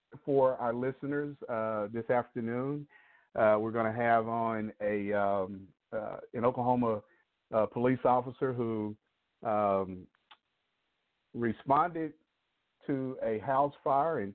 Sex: male